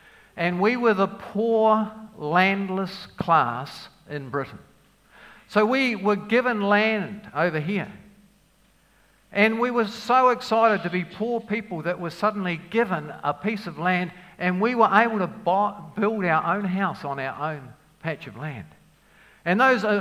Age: 50-69